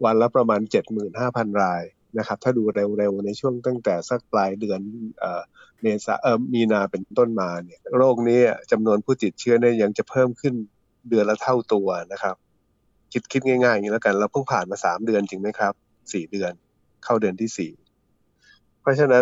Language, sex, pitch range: English, male, 105-125 Hz